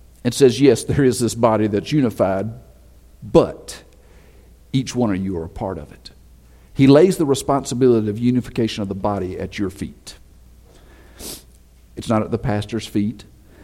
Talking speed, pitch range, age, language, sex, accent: 165 wpm, 100-170 Hz, 50-69, English, male, American